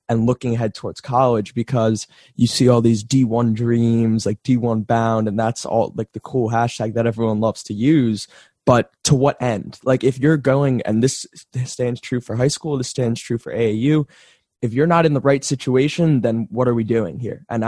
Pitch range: 115-125 Hz